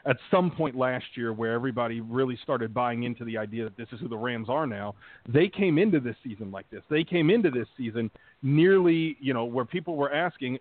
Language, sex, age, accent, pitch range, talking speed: English, male, 40-59, American, 120-155 Hz, 225 wpm